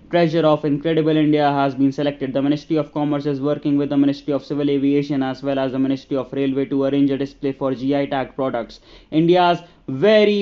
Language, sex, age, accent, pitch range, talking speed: English, male, 20-39, Indian, 140-155 Hz, 205 wpm